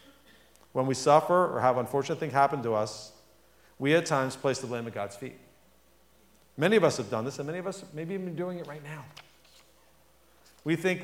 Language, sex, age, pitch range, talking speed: English, male, 50-69, 120-165 Hz, 200 wpm